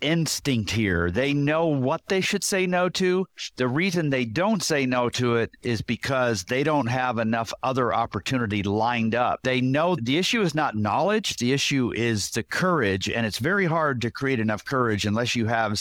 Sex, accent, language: male, American, English